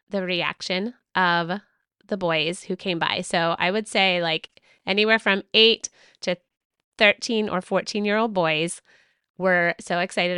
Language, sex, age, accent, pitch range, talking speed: English, female, 20-39, American, 180-225 Hz, 150 wpm